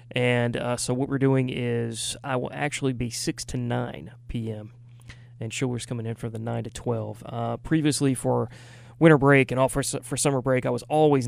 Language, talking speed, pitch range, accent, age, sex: English, 200 wpm, 115-130 Hz, American, 30-49, male